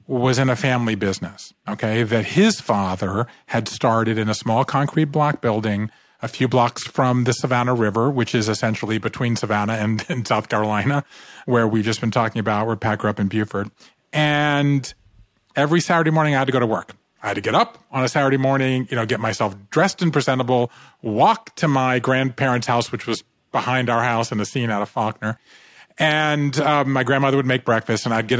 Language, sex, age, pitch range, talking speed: English, male, 40-59, 115-140 Hz, 205 wpm